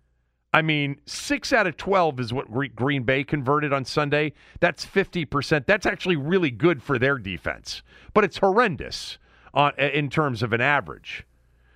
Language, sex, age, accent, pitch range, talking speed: English, male, 40-59, American, 100-150 Hz, 155 wpm